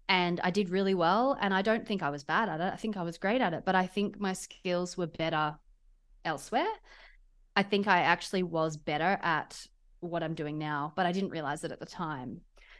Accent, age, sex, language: Australian, 30-49, female, English